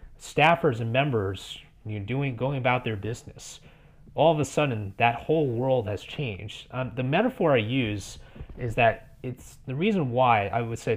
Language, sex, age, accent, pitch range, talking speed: English, male, 30-49, American, 110-140 Hz, 175 wpm